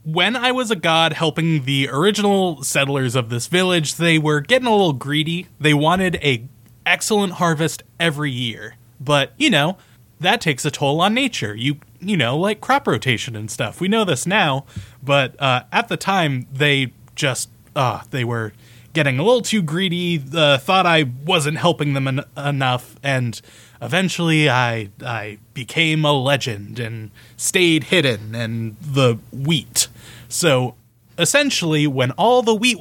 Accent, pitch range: American, 125-175 Hz